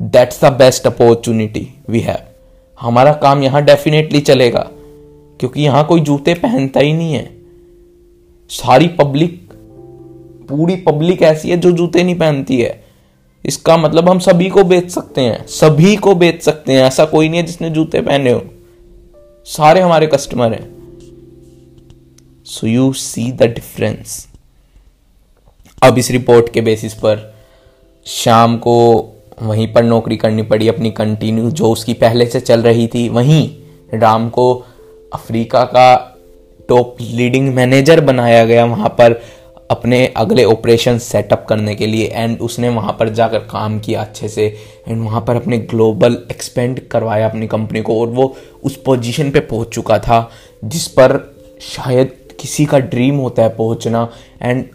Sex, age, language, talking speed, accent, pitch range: male, 20-39, Hindi, 150 wpm, native, 110-140 Hz